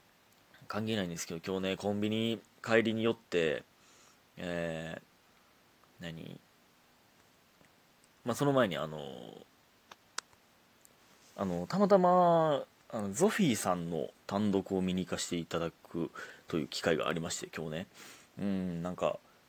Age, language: 30-49, Japanese